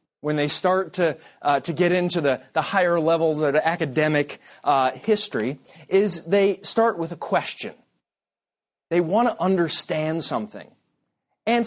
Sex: male